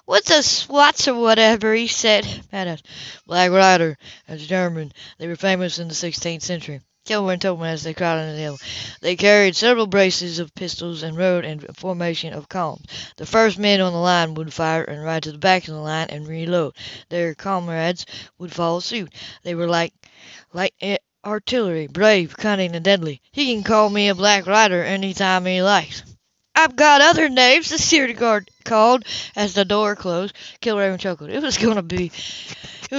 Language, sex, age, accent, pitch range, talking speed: English, female, 60-79, American, 160-210 Hz, 180 wpm